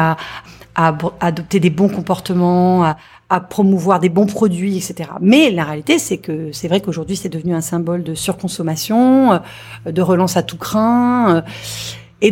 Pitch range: 160-200 Hz